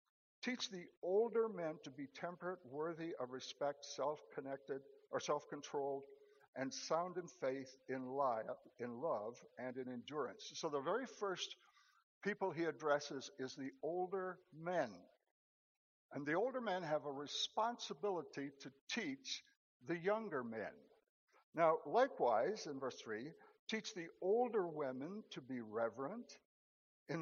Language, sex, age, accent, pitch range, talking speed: English, male, 60-79, American, 140-215 Hz, 130 wpm